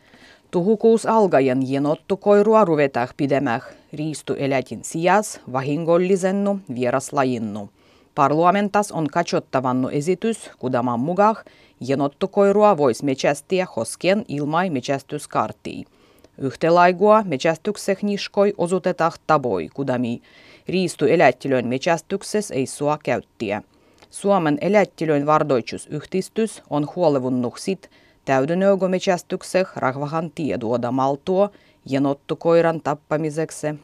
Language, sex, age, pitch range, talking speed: Finnish, female, 30-49, 135-190 Hz, 75 wpm